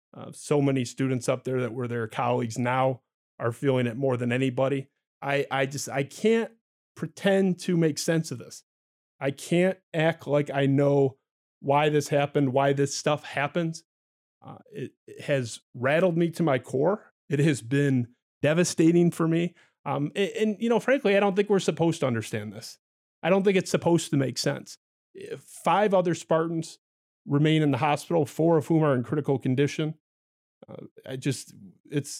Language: English